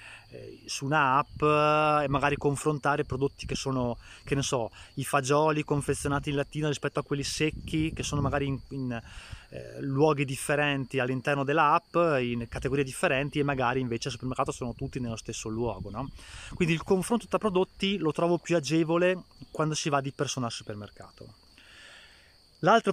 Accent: native